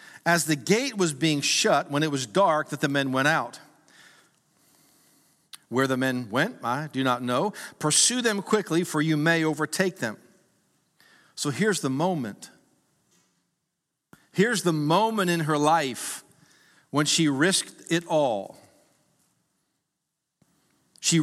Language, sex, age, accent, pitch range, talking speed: English, male, 50-69, American, 140-175 Hz, 135 wpm